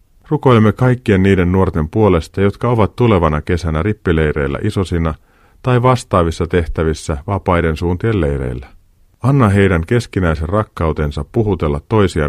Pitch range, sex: 80-100 Hz, male